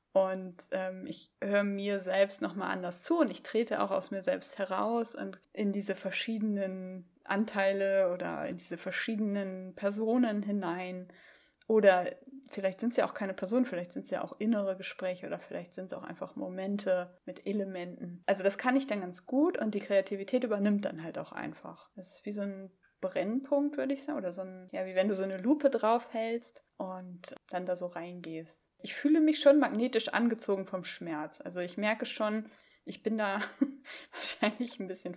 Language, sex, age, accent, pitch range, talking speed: German, female, 20-39, German, 185-240 Hz, 190 wpm